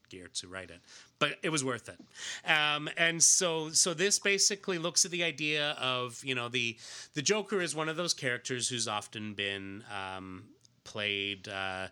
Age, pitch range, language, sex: 30-49, 105-130 Hz, English, male